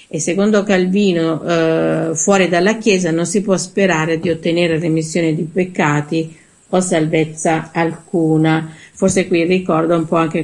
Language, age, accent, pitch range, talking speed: Italian, 50-69, native, 160-190 Hz, 145 wpm